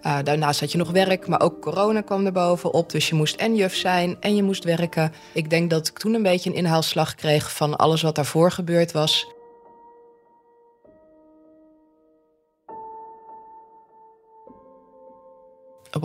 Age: 20-39